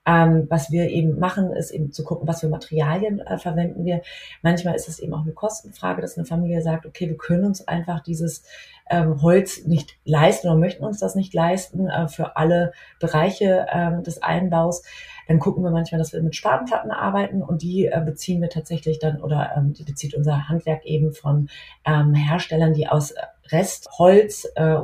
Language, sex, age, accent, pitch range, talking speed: German, female, 30-49, German, 150-175 Hz, 195 wpm